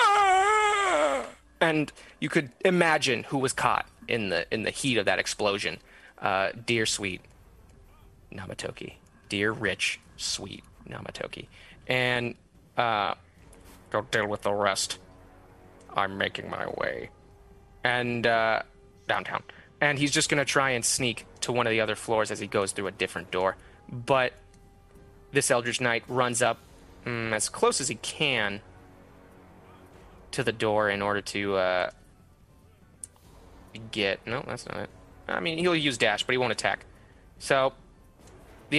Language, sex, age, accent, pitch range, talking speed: English, male, 20-39, American, 95-135 Hz, 140 wpm